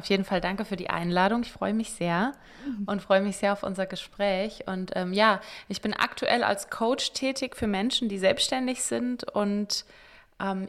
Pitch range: 190-220 Hz